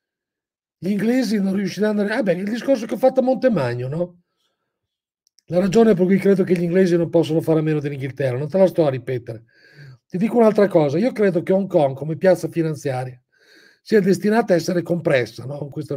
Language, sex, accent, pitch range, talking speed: Italian, male, native, 145-195 Hz, 205 wpm